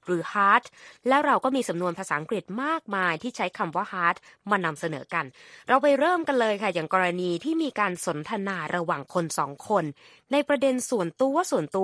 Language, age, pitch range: Thai, 20-39, 175-255 Hz